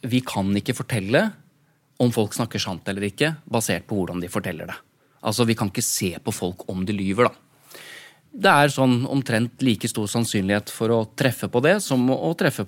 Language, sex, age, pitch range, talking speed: English, male, 20-39, 110-145 Hz, 200 wpm